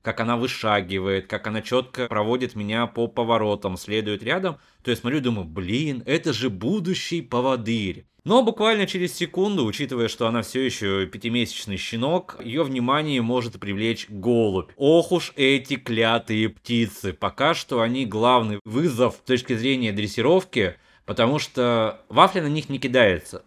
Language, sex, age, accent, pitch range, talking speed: Russian, male, 20-39, native, 110-140 Hz, 150 wpm